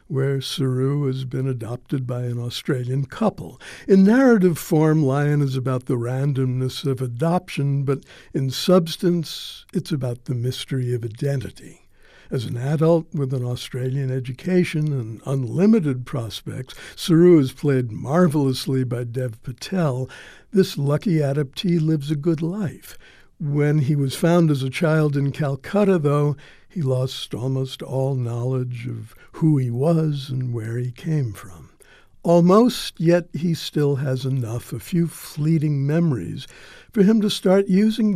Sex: male